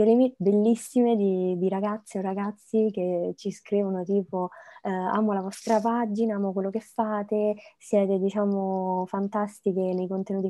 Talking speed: 135 wpm